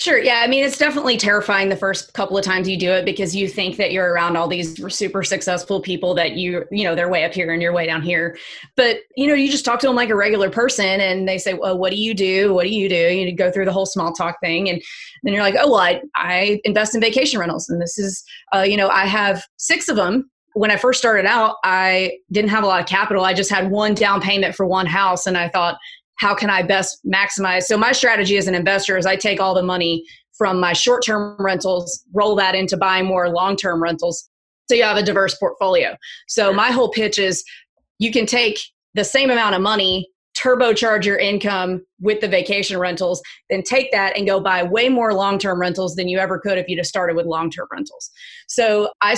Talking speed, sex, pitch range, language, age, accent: 245 wpm, female, 185-220 Hz, English, 30-49, American